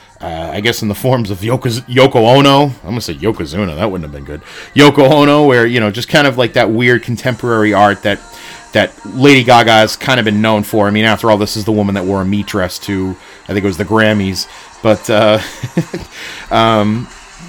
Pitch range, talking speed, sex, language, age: 110-140 Hz, 225 wpm, male, English, 30-49